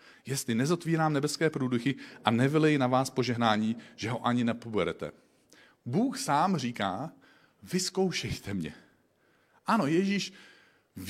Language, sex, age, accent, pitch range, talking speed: Czech, male, 40-59, native, 105-155 Hz, 115 wpm